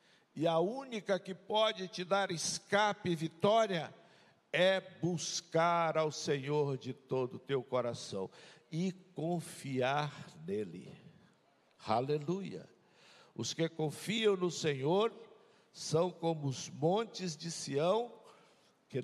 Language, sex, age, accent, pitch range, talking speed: Portuguese, male, 60-79, Brazilian, 140-190 Hz, 110 wpm